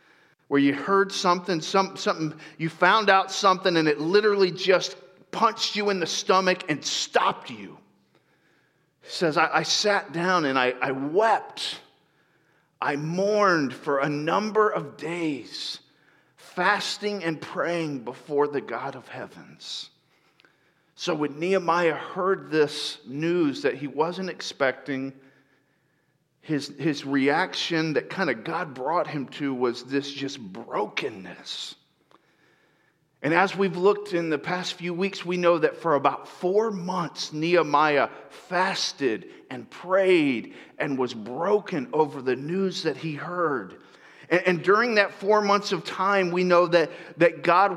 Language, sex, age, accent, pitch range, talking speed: English, male, 40-59, American, 155-195 Hz, 140 wpm